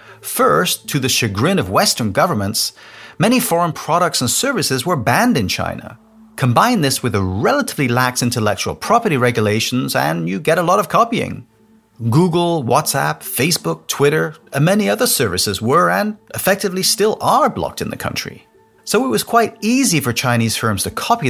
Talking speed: 165 wpm